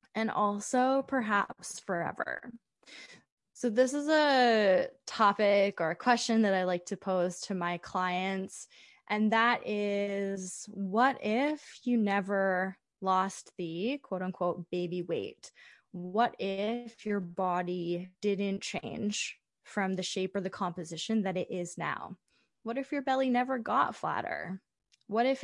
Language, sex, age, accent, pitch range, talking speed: English, female, 20-39, American, 185-225 Hz, 135 wpm